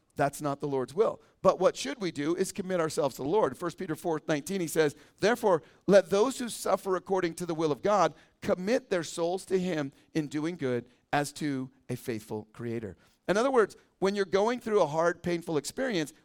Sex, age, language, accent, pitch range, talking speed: male, 40-59, English, American, 150-190 Hz, 210 wpm